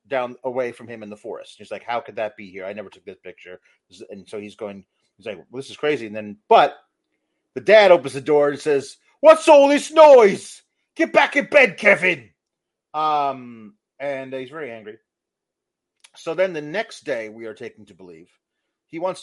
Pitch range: 115-180 Hz